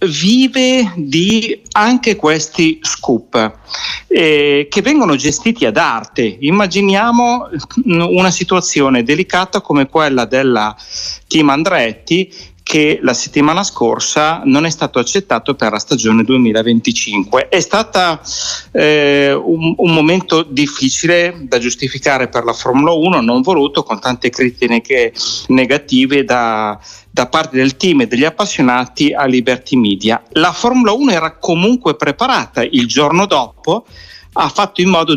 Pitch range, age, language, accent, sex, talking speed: 130-185 Hz, 40-59, Italian, native, male, 130 wpm